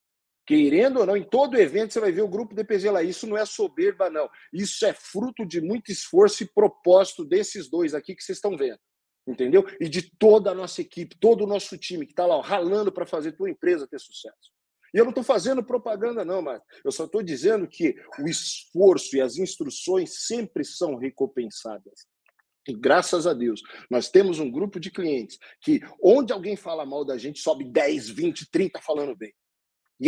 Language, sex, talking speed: Portuguese, male, 200 wpm